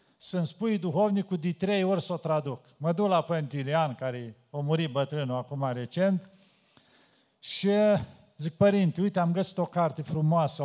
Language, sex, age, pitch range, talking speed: Romanian, male, 50-69, 155-200 Hz, 160 wpm